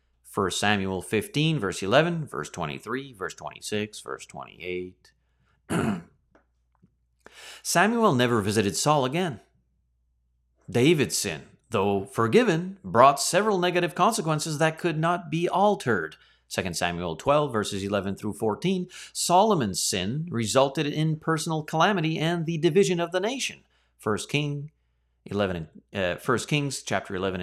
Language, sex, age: English, male, 30-49